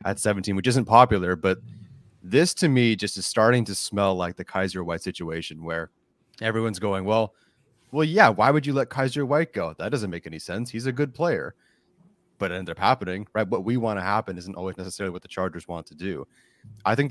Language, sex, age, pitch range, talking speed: English, male, 30-49, 90-110 Hz, 220 wpm